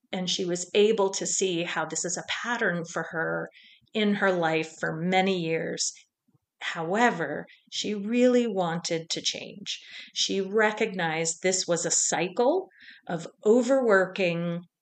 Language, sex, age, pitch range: English, female, 40-59, 165-205 Hz